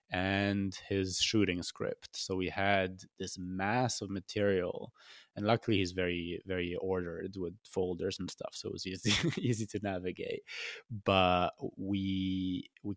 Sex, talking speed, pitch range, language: male, 145 wpm, 90-100 Hz, English